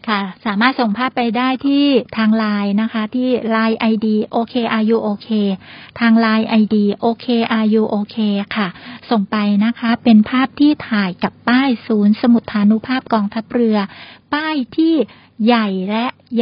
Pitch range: 210-250 Hz